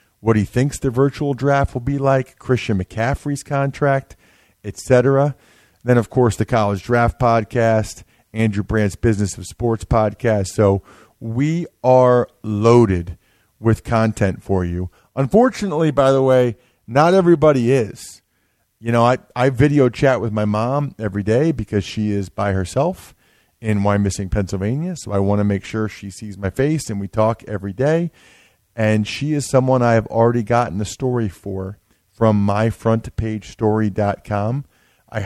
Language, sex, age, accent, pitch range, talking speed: English, male, 40-59, American, 105-130 Hz, 155 wpm